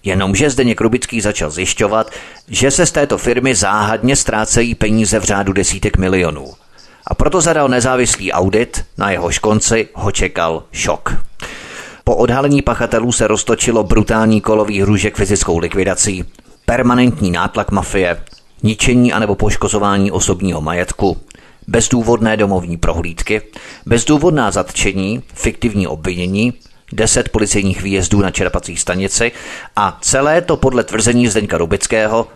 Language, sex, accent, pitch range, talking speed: Czech, male, native, 95-120 Hz, 120 wpm